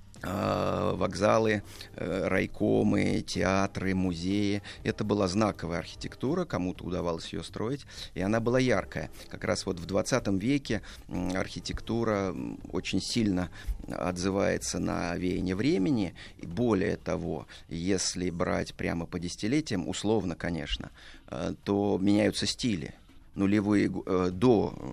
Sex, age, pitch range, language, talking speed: male, 30-49, 90-110 Hz, Russian, 100 wpm